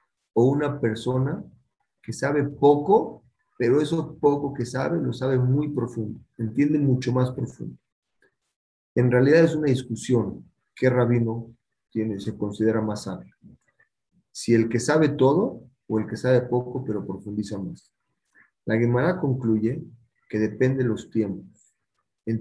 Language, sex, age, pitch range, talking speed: Spanish, male, 40-59, 110-130 Hz, 140 wpm